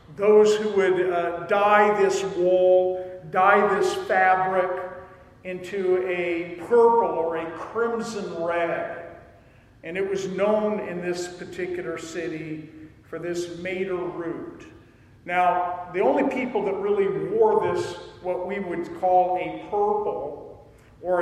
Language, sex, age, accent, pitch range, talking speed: English, male, 50-69, American, 165-205 Hz, 125 wpm